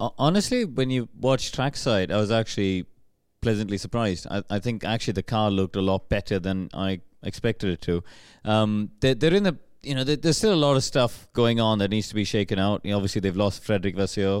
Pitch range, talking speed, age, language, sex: 95-115 Hz, 220 wpm, 30-49, English, male